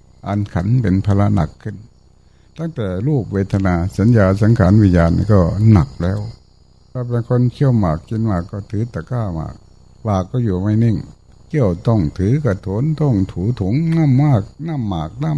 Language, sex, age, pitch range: Thai, male, 60-79, 95-135 Hz